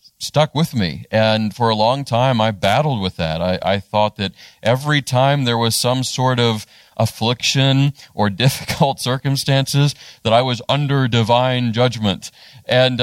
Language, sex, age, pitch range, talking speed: English, male, 40-59, 105-135 Hz, 155 wpm